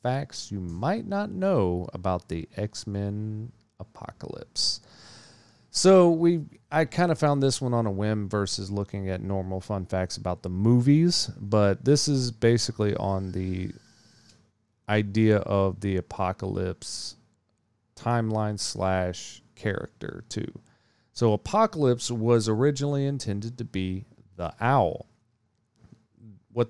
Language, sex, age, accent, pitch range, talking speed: English, male, 40-59, American, 100-135 Hz, 120 wpm